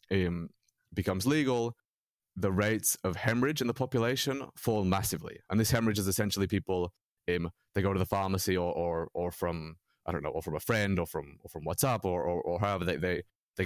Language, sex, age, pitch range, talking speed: English, male, 30-49, 85-100 Hz, 200 wpm